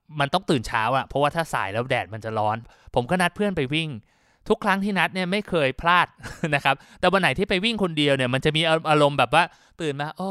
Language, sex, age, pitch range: Thai, male, 20-39, 125-165 Hz